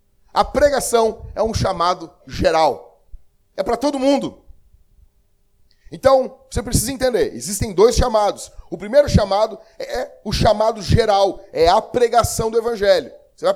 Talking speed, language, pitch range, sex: 135 wpm, Portuguese, 180-275 Hz, male